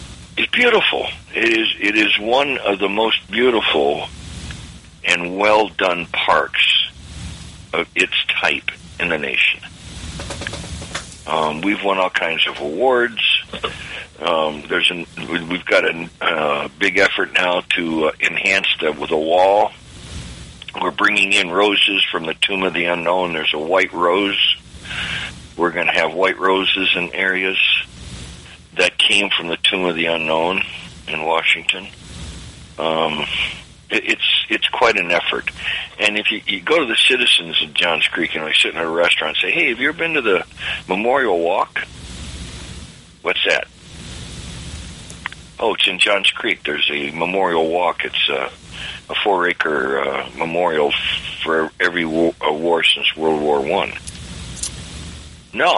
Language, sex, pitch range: English, male, 75-95 Hz